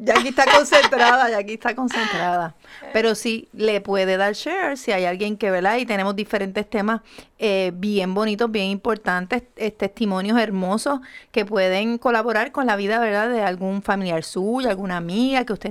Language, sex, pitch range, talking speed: Spanish, female, 200-255 Hz, 175 wpm